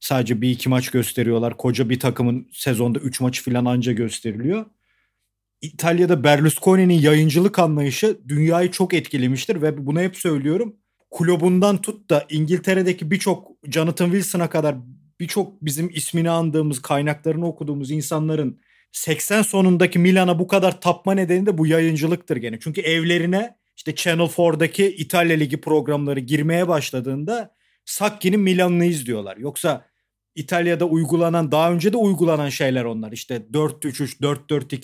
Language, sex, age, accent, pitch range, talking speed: Turkish, male, 40-59, native, 140-180 Hz, 130 wpm